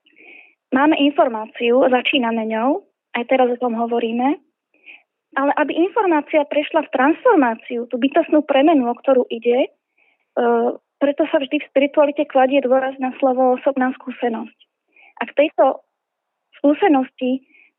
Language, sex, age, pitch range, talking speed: Slovak, female, 20-39, 250-295 Hz, 120 wpm